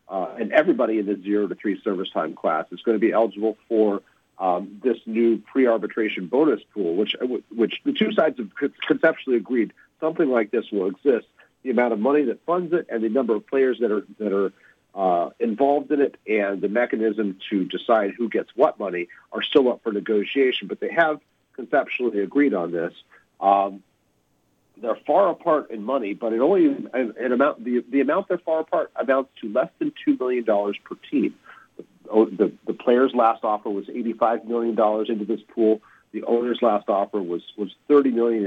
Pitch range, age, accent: 105-130 Hz, 50-69, American